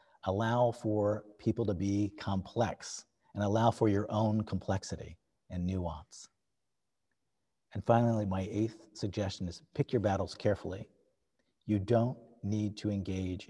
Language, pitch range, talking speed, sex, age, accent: English, 95-120 Hz, 130 wpm, male, 50-69, American